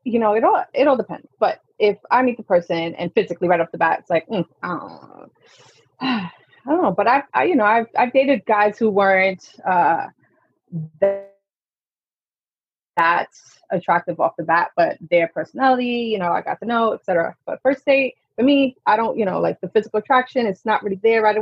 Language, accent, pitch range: English, American, 190-280 Hz